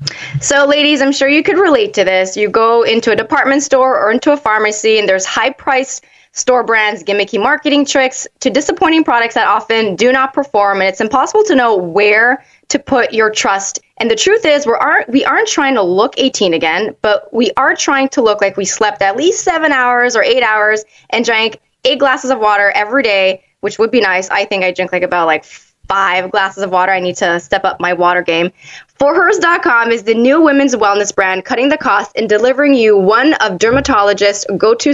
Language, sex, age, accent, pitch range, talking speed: English, female, 20-39, American, 195-275 Hz, 210 wpm